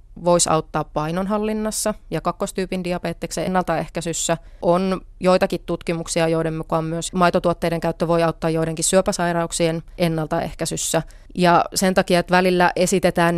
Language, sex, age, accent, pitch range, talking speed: Finnish, female, 30-49, native, 165-190 Hz, 115 wpm